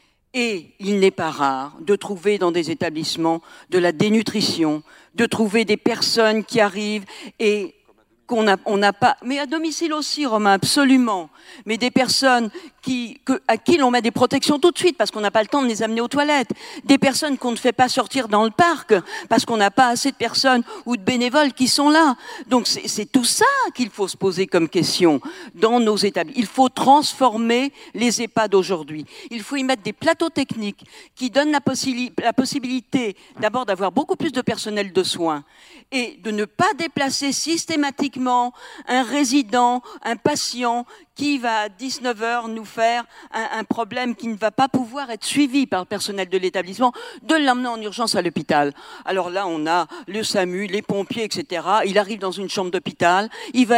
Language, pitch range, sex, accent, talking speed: French, 205-265 Hz, female, French, 190 wpm